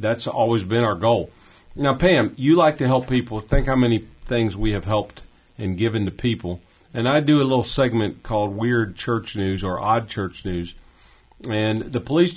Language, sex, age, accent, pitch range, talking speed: English, male, 40-59, American, 105-130 Hz, 195 wpm